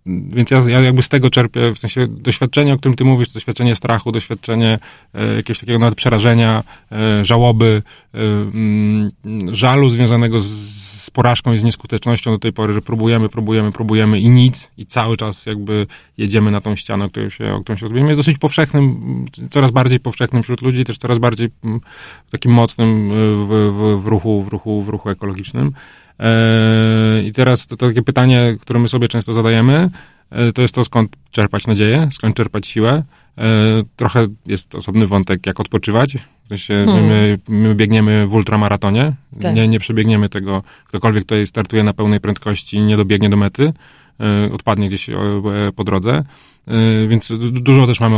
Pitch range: 105-120 Hz